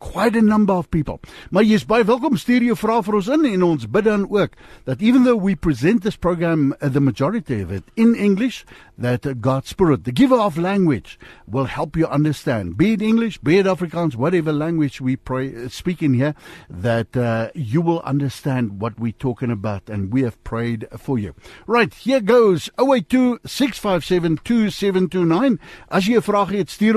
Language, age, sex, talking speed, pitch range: English, 60-79, male, 195 wpm, 125-210 Hz